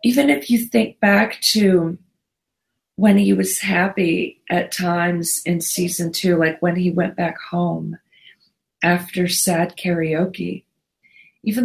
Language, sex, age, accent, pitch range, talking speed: English, female, 40-59, American, 175-225 Hz, 130 wpm